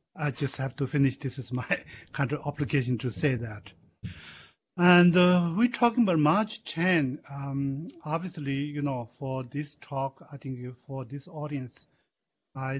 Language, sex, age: English, male, 50-69